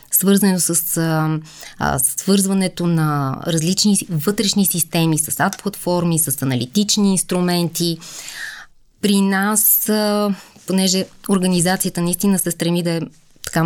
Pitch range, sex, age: 155-195 Hz, female, 20-39